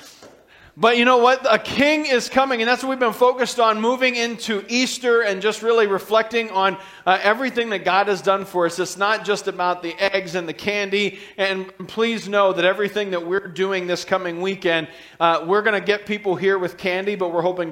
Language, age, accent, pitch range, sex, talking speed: English, 40-59, American, 175-220 Hz, male, 215 wpm